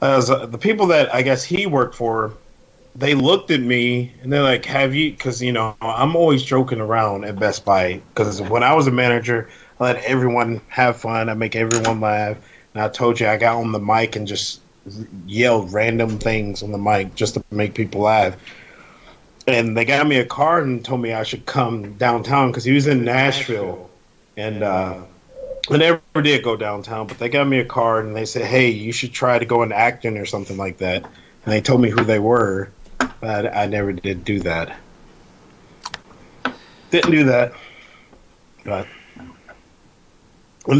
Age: 30-49